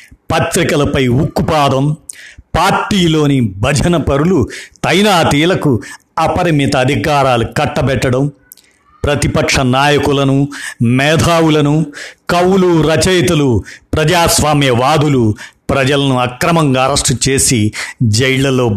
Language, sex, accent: Telugu, male, native